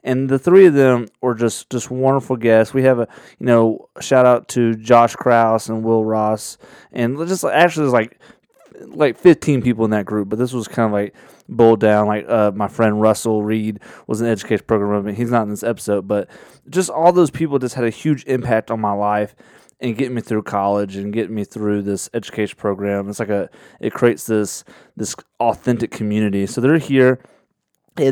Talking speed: 205 wpm